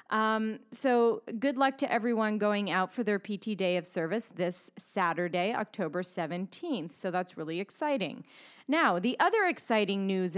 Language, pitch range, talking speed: English, 200-280 Hz, 155 wpm